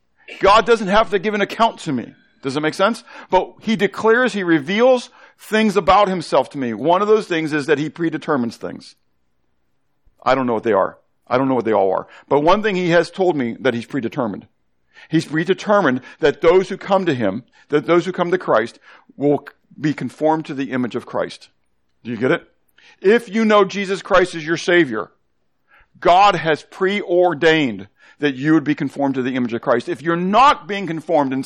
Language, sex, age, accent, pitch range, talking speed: English, male, 50-69, American, 140-195 Hz, 205 wpm